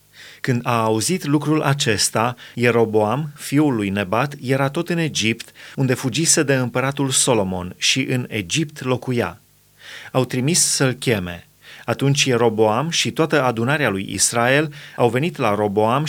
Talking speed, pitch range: 140 wpm, 120-150 Hz